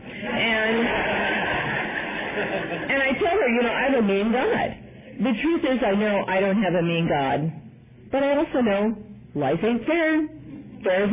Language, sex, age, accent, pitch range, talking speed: English, female, 50-69, American, 160-235 Hz, 160 wpm